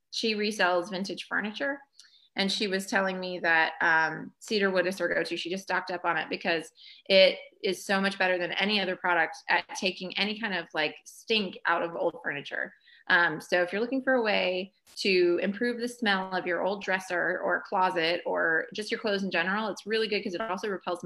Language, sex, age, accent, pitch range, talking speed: English, female, 20-39, American, 175-210 Hz, 215 wpm